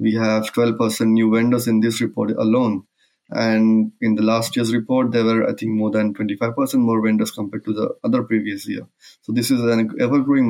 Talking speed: 200 wpm